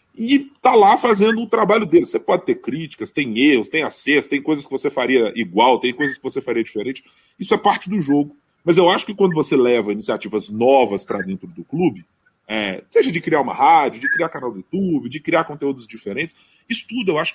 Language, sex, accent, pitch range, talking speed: Portuguese, male, Brazilian, 130-215 Hz, 220 wpm